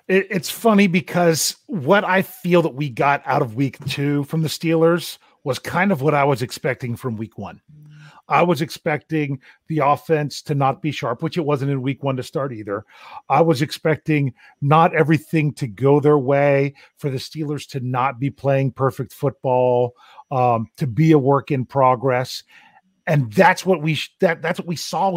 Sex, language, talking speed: male, English, 185 wpm